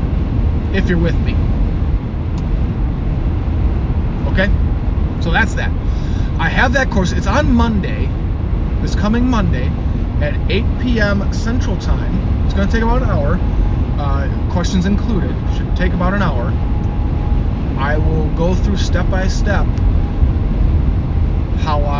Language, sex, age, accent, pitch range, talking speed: English, male, 30-49, American, 80-90 Hz, 125 wpm